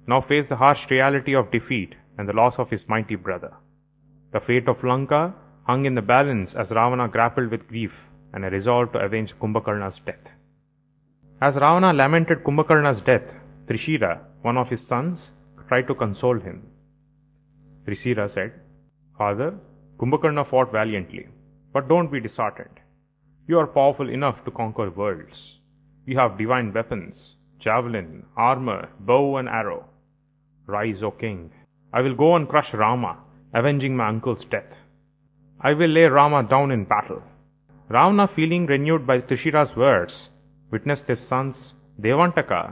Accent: Indian